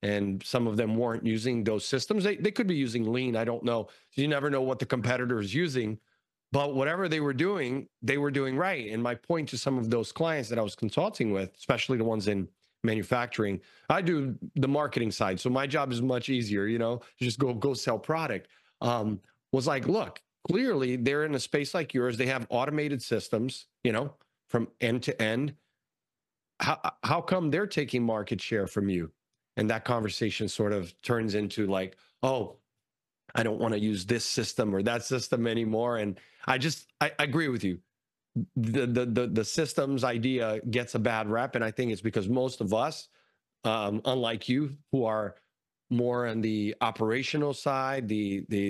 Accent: American